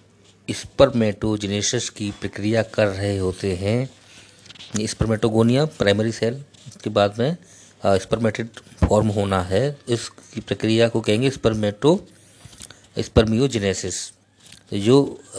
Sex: male